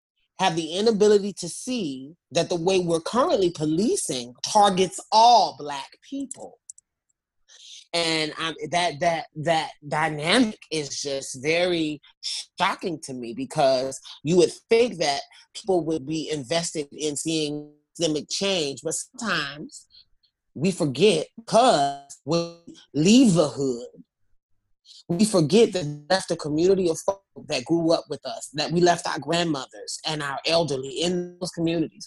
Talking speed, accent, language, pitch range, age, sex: 135 wpm, American, English, 150-185 Hz, 30-49, male